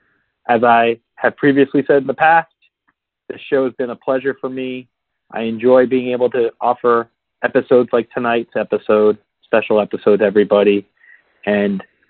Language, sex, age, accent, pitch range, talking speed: English, male, 30-49, American, 105-130 Hz, 155 wpm